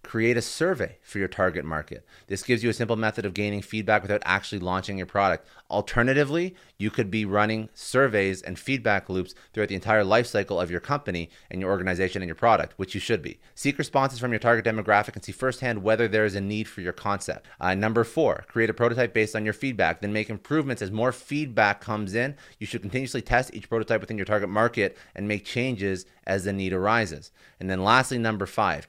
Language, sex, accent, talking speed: English, male, American, 220 wpm